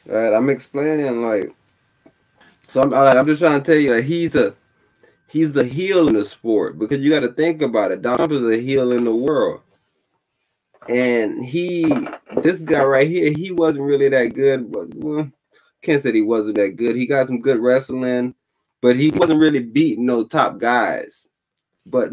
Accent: American